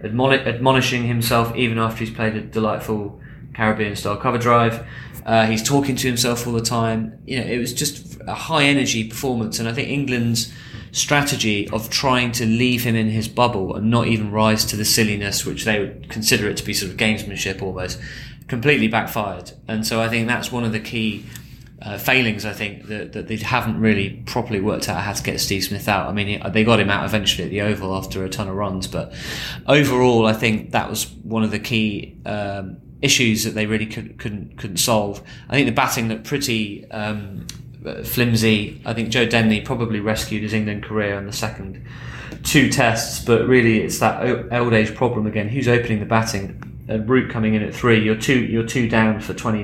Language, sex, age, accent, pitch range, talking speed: English, male, 20-39, British, 105-120 Hz, 205 wpm